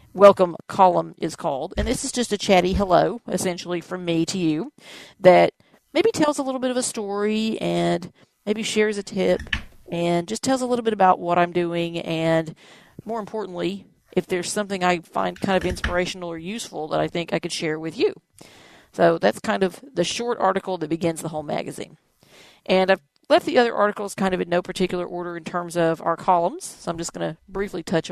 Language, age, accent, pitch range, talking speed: English, 40-59, American, 165-205 Hz, 205 wpm